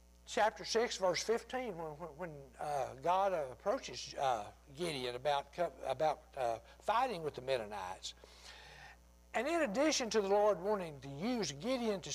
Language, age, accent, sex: English, 60-79, American, male